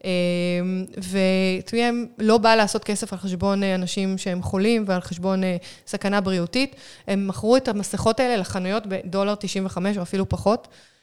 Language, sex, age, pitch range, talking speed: Hebrew, female, 20-39, 185-220 Hz, 140 wpm